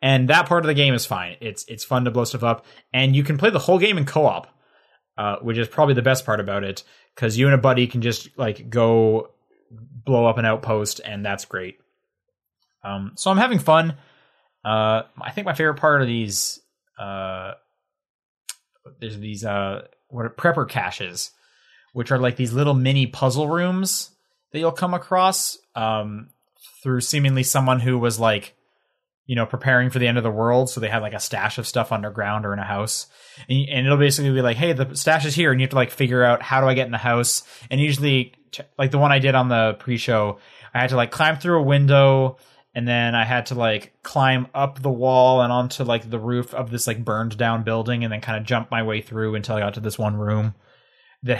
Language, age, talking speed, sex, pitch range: English, 20-39, 225 wpm, male, 110-135 Hz